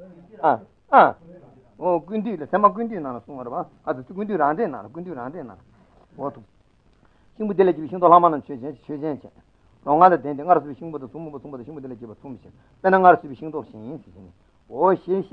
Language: Italian